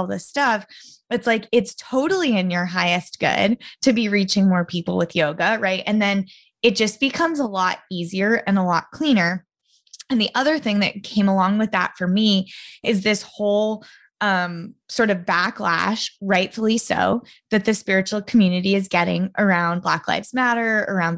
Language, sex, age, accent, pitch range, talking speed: English, female, 20-39, American, 180-220 Hz, 175 wpm